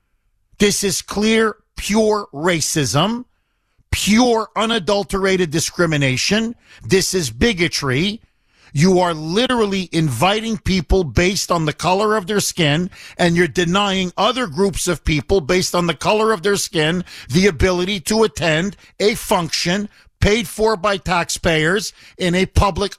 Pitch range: 165-220 Hz